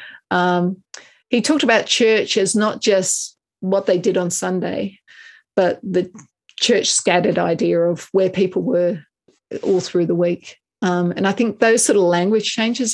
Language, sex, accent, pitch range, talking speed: English, female, Australian, 180-220 Hz, 160 wpm